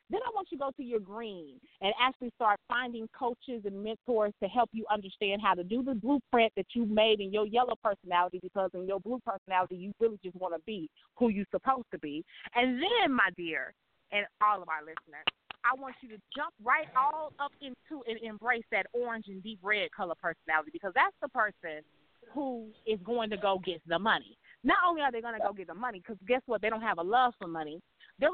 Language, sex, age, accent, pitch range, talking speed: English, female, 30-49, American, 200-260 Hz, 230 wpm